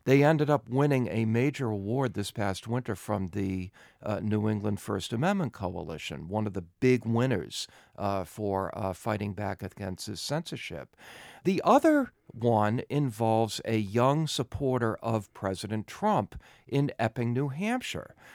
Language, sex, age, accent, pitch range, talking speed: English, male, 50-69, American, 95-125 Hz, 145 wpm